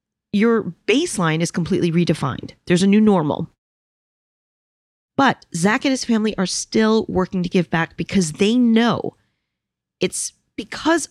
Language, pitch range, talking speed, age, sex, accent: English, 180-230 Hz, 135 wpm, 40-59, female, American